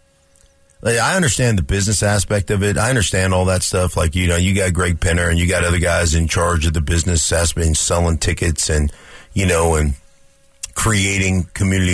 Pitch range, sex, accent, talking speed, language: 85-100 Hz, male, American, 195 wpm, English